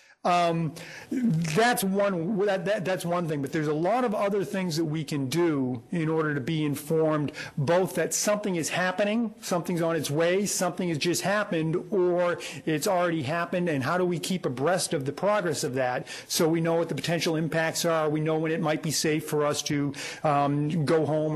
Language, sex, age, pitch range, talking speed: English, male, 40-59, 155-190 Hz, 205 wpm